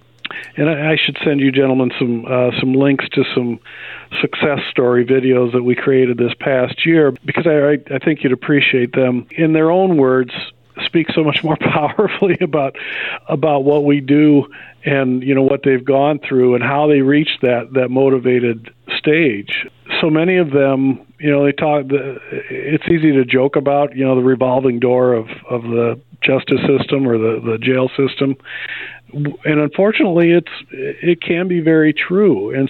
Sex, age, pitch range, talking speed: male, 50-69, 125-150 Hz, 175 wpm